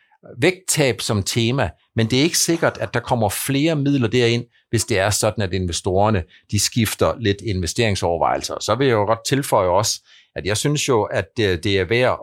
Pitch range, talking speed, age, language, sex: 110-150 Hz, 190 wpm, 50-69, Danish, male